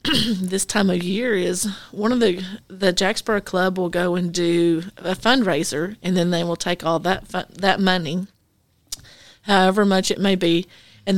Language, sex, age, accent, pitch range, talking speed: English, female, 40-59, American, 170-195 Hz, 175 wpm